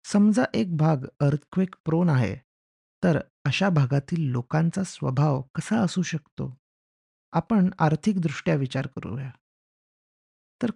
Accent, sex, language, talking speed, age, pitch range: native, male, Marathi, 105 wpm, 30-49, 135-180 Hz